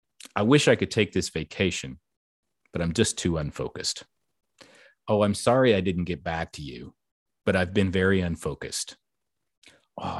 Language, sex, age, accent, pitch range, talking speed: English, male, 30-49, American, 90-115 Hz, 160 wpm